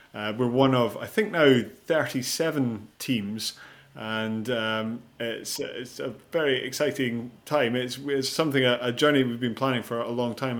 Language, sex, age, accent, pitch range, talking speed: English, male, 30-49, British, 115-135 Hz, 170 wpm